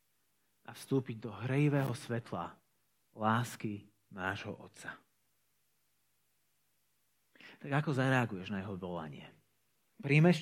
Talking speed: 85 wpm